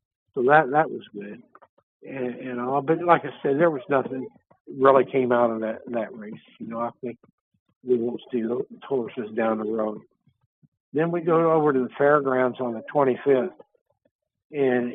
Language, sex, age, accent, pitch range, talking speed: English, male, 60-79, American, 125-140 Hz, 180 wpm